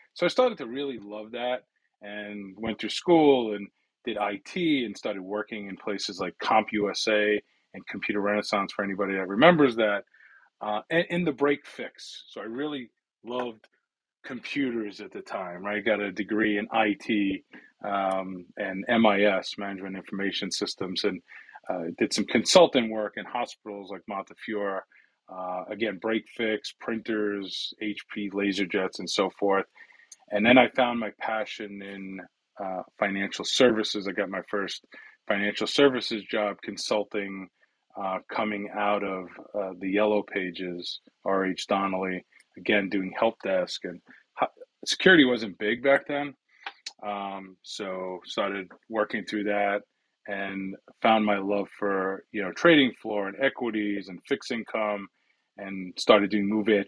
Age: 30-49